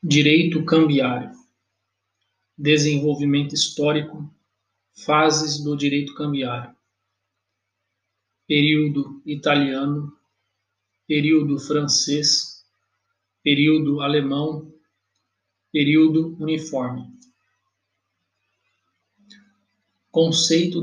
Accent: Brazilian